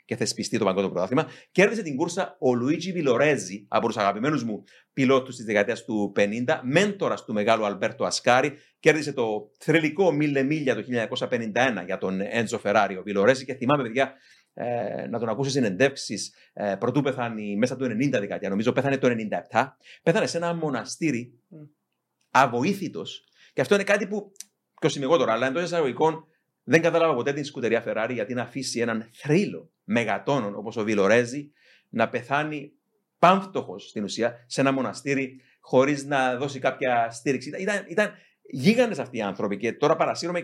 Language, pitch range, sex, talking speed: Greek, 120-170 Hz, male, 155 wpm